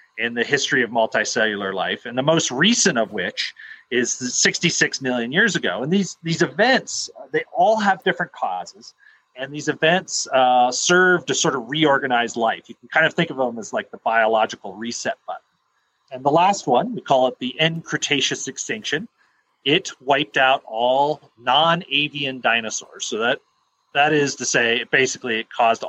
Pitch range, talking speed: 125-170 Hz, 175 wpm